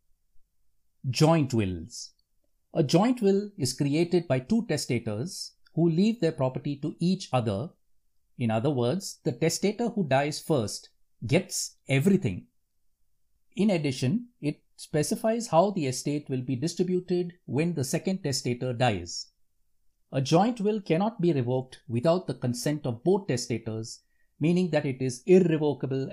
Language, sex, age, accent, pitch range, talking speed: English, male, 50-69, Indian, 125-180 Hz, 135 wpm